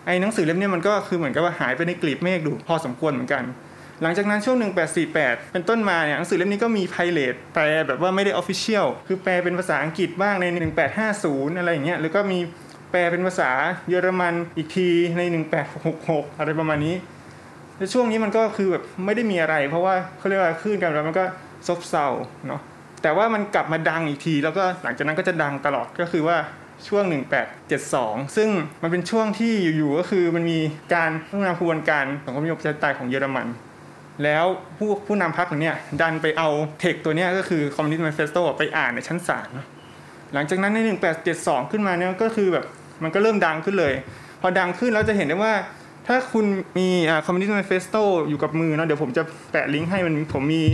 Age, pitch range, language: 20-39, 155-190 Hz, English